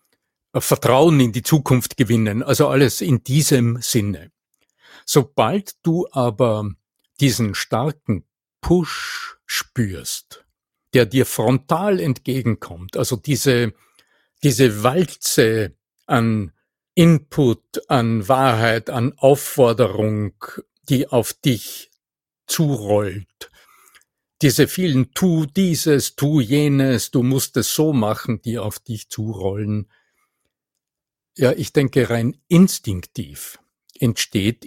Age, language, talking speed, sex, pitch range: 50-69, German, 95 wpm, male, 110-150 Hz